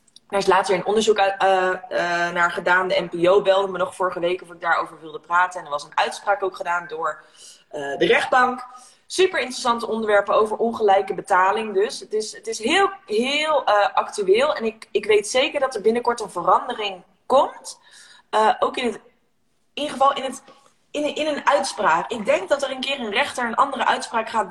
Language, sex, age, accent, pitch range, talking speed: Dutch, female, 20-39, Dutch, 175-235 Hz, 195 wpm